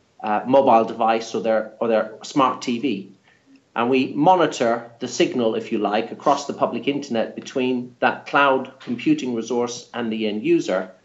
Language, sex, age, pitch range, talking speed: English, male, 40-59, 115-140 Hz, 160 wpm